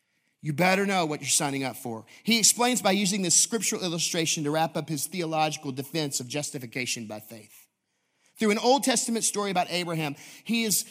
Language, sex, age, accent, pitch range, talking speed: English, male, 40-59, American, 160-220 Hz, 185 wpm